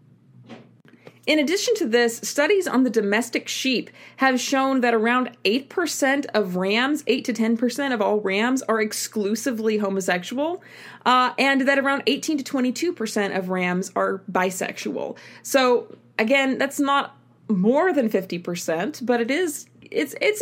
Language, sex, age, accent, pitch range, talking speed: English, female, 20-39, American, 190-270 Hz, 150 wpm